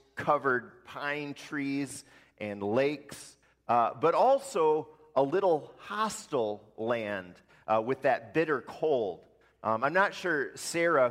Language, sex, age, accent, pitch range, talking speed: English, male, 30-49, American, 115-150 Hz, 120 wpm